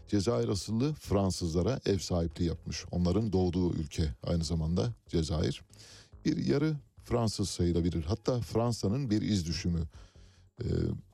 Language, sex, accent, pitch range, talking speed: Turkish, male, native, 85-105 Hz, 120 wpm